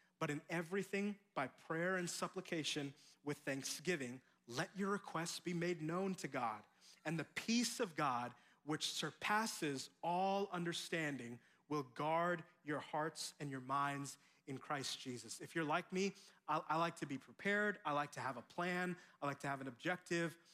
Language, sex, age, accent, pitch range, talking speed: English, male, 30-49, American, 150-185 Hz, 165 wpm